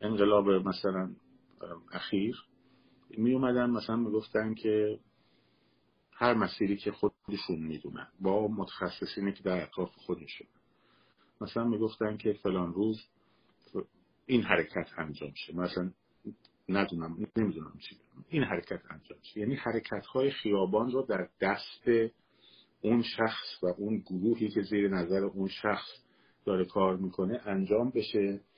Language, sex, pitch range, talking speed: Persian, male, 90-115 Hz, 120 wpm